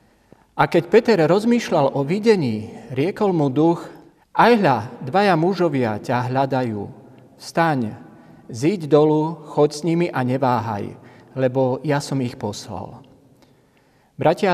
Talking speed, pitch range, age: 115 wpm, 125-165 Hz, 40-59